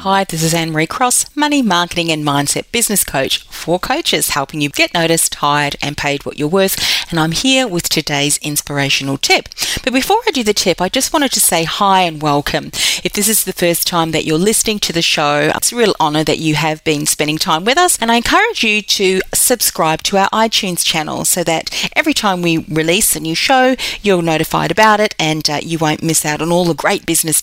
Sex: female